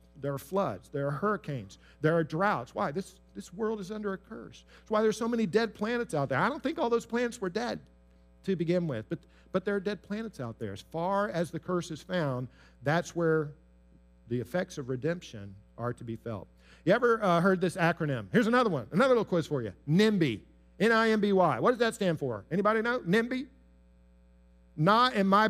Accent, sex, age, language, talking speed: American, male, 50-69, English, 210 wpm